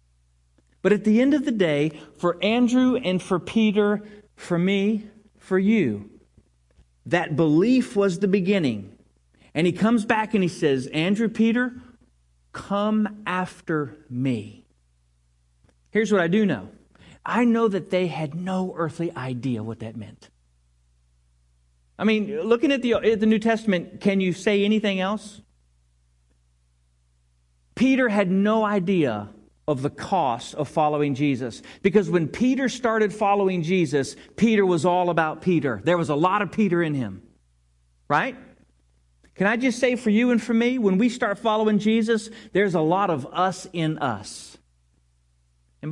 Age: 40-59